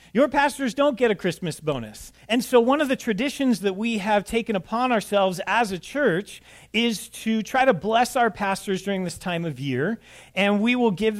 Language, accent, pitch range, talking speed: English, American, 155-215 Hz, 205 wpm